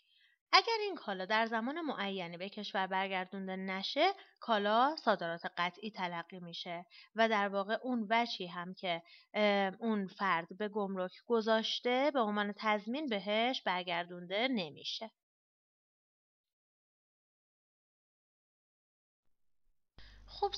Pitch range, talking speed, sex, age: 190-255 Hz, 100 wpm, female, 30-49